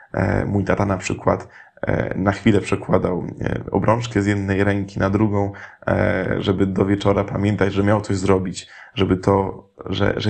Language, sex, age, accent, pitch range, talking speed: Polish, male, 20-39, native, 100-115 Hz, 145 wpm